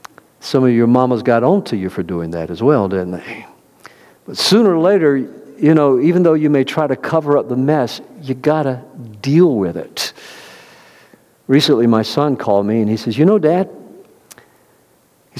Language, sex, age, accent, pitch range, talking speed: English, male, 50-69, American, 120-170 Hz, 190 wpm